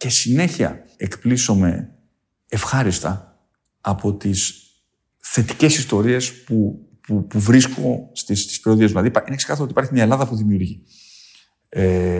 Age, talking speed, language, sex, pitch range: 50-69, 125 wpm, Greek, male, 105-150 Hz